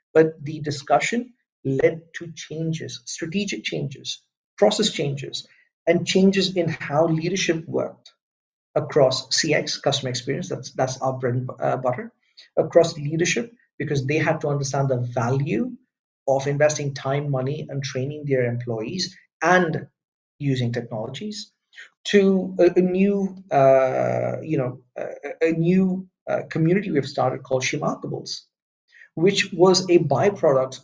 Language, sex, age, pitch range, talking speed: English, male, 50-69, 135-175 Hz, 130 wpm